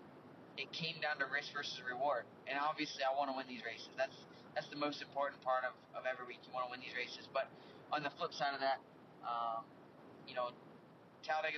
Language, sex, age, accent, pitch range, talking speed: English, male, 20-39, American, 125-145 Hz, 220 wpm